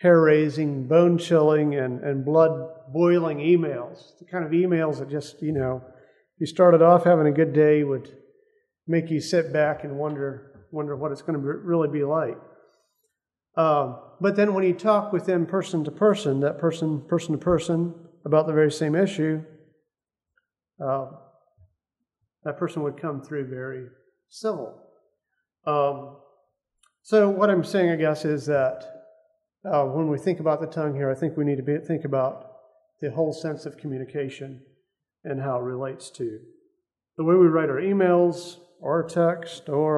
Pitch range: 145-175 Hz